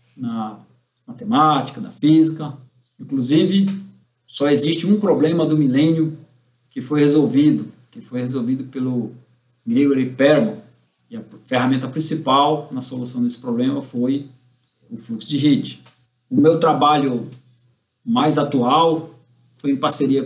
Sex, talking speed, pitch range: male, 120 wpm, 125-155 Hz